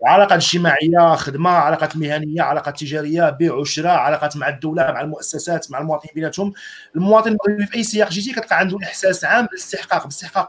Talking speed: 160 wpm